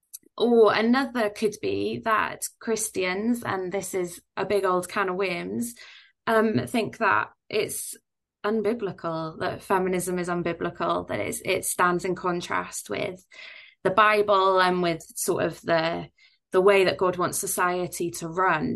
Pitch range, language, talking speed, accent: 175-210 Hz, English, 145 wpm, British